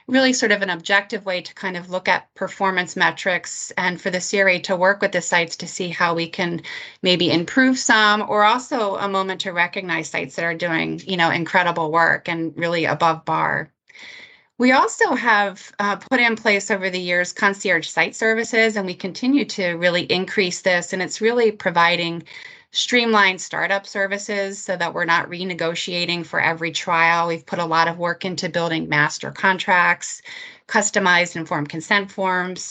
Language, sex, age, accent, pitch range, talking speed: English, female, 30-49, American, 170-200 Hz, 180 wpm